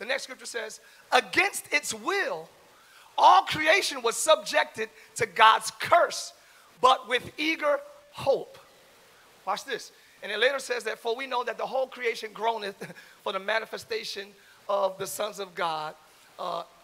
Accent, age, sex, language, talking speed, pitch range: American, 40-59, male, English, 150 wpm, 205-295 Hz